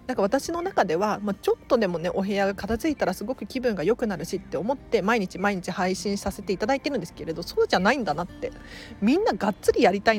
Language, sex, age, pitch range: Japanese, female, 40-59, 185-250 Hz